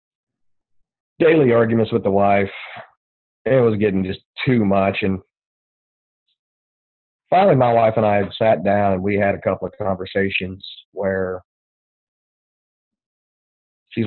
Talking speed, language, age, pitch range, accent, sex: 120 wpm, English, 40-59, 95-115 Hz, American, male